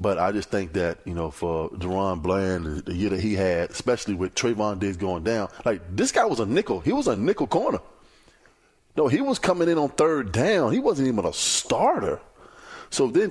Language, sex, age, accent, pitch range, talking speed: English, male, 20-39, American, 100-130 Hz, 210 wpm